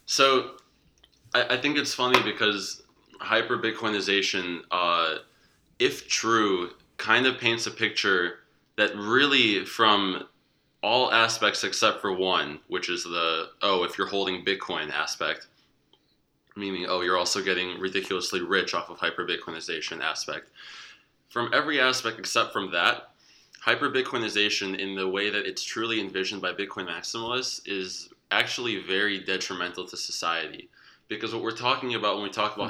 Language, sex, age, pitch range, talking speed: English, male, 20-39, 95-115 Hz, 140 wpm